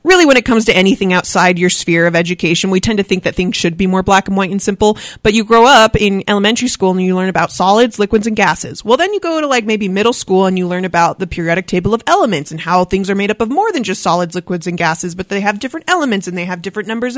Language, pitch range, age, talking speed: English, 190-250 Hz, 30-49, 285 wpm